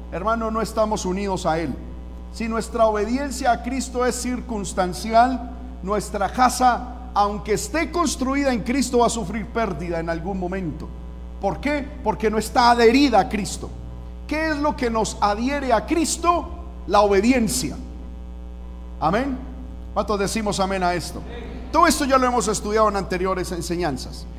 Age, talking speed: 50-69, 150 wpm